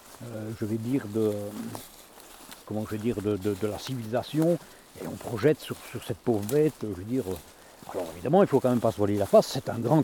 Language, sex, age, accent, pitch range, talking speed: French, male, 60-79, French, 115-160 Hz, 235 wpm